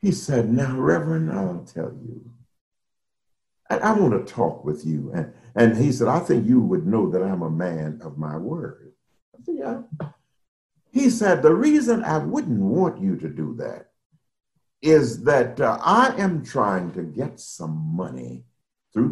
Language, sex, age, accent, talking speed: English, male, 60-79, American, 175 wpm